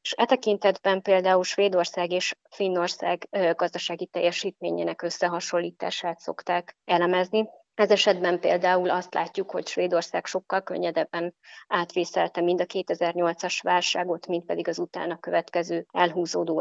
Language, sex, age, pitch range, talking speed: Hungarian, female, 20-39, 170-190 Hz, 110 wpm